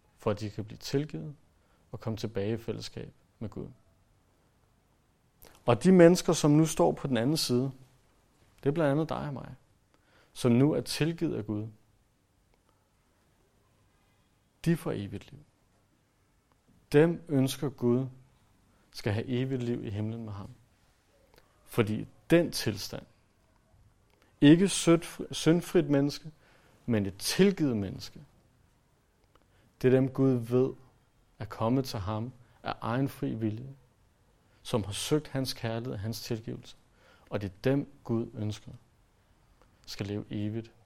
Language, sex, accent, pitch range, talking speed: Danish, male, native, 105-140 Hz, 135 wpm